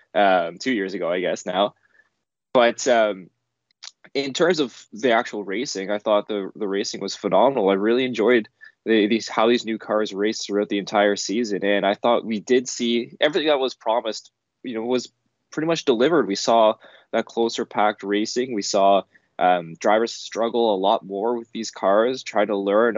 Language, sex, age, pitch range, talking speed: English, male, 20-39, 100-125 Hz, 190 wpm